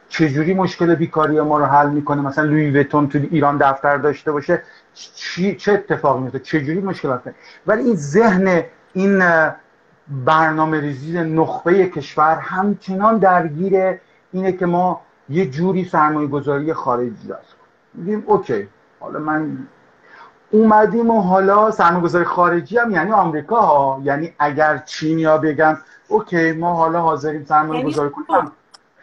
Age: 50-69